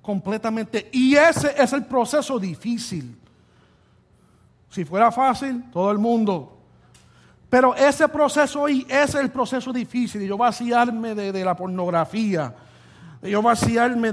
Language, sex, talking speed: English, male, 125 wpm